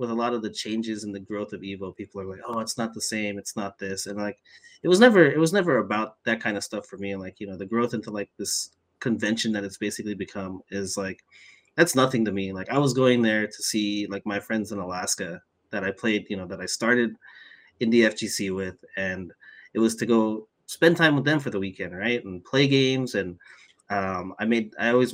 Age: 30-49